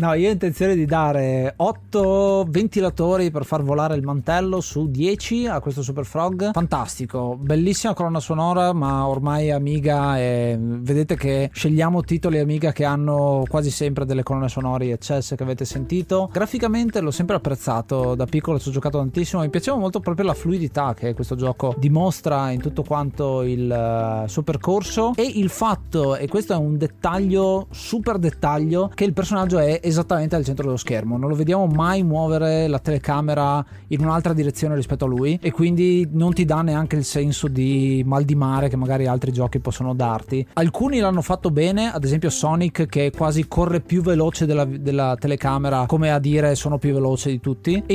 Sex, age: male, 20-39